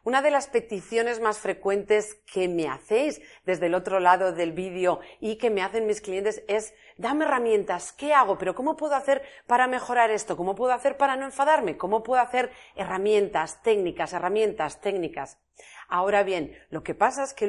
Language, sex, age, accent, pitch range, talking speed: Spanish, female, 40-59, Spanish, 195-250 Hz, 180 wpm